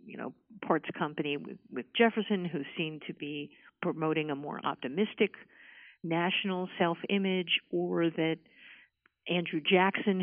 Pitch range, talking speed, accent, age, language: 170-210 Hz, 125 wpm, American, 50-69, English